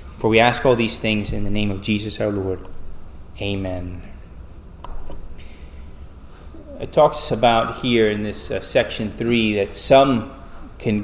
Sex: male